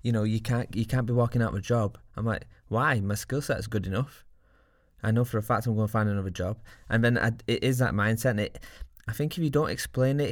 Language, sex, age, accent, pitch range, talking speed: English, male, 20-39, British, 100-120 Hz, 280 wpm